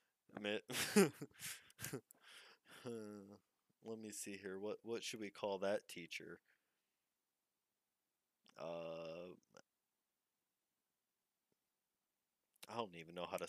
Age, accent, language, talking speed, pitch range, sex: 20-39, American, English, 80 wpm, 95-115 Hz, male